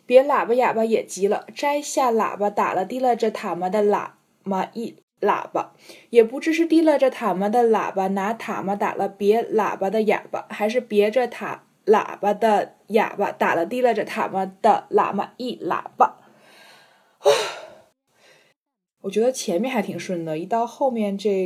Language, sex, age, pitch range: Chinese, female, 20-39, 195-245 Hz